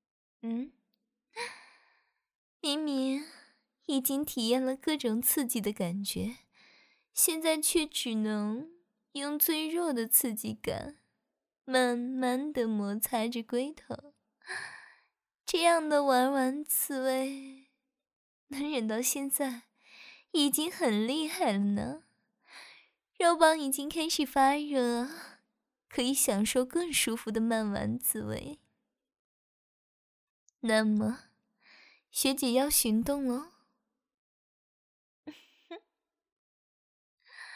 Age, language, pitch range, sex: 20-39, Chinese, 235-295 Hz, female